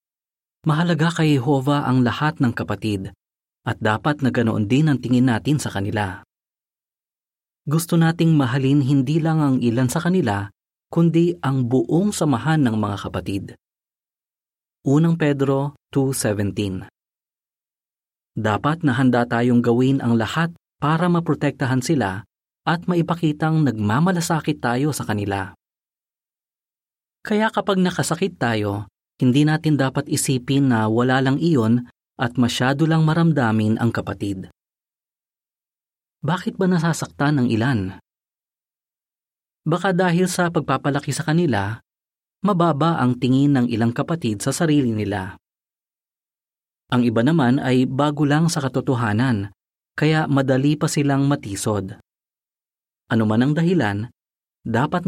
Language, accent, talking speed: Filipino, native, 115 wpm